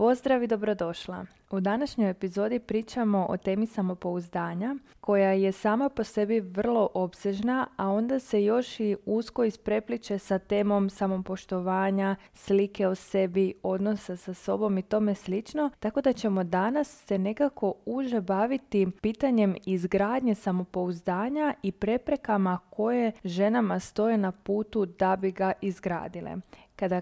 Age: 20-39